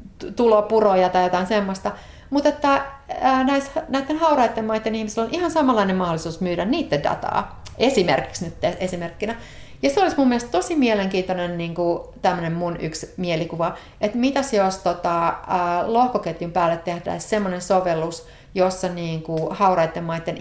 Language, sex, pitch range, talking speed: Finnish, female, 165-215 Hz, 140 wpm